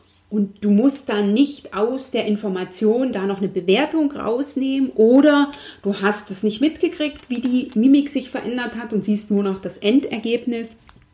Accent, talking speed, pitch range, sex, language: German, 165 wpm, 195-245 Hz, female, German